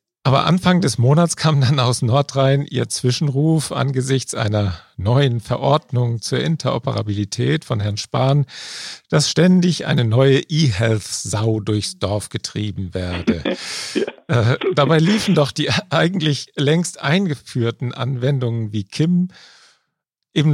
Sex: male